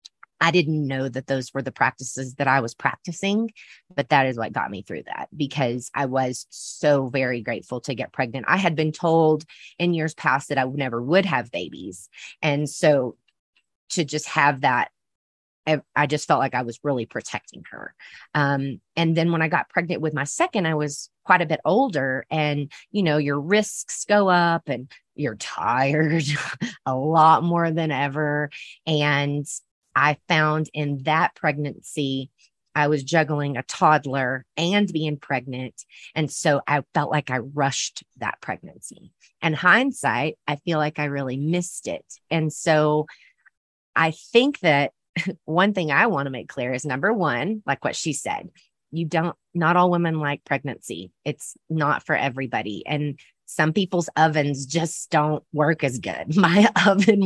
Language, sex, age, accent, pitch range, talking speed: English, female, 30-49, American, 140-170 Hz, 170 wpm